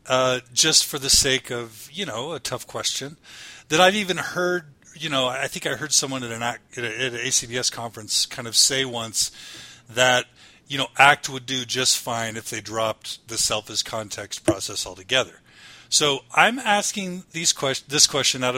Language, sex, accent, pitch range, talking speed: English, male, American, 120-155 Hz, 180 wpm